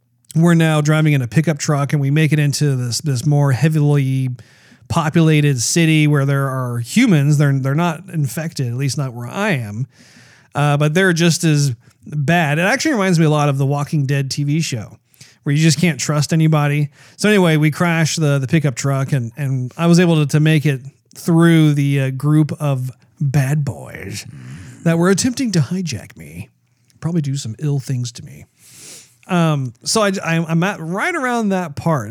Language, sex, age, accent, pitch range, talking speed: English, male, 40-59, American, 130-160 Hz, 195 wpm